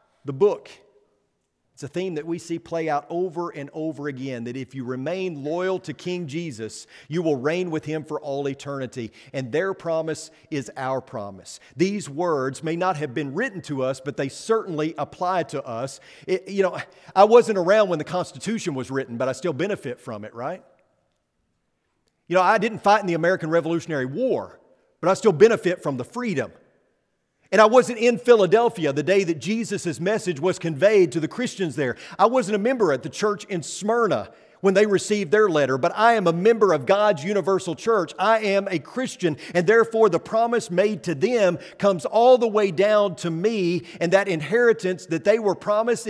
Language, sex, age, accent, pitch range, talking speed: English, male, 40-59, American, 150-205 Hz, 195 wpm